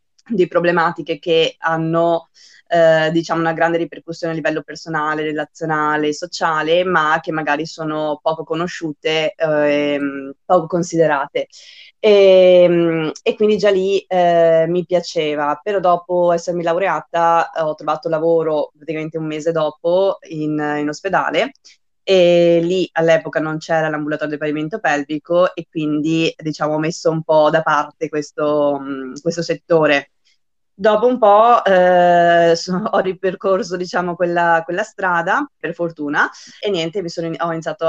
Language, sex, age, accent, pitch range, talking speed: Italian, female, 20-39, native, 155-175 Hz, 135 wpm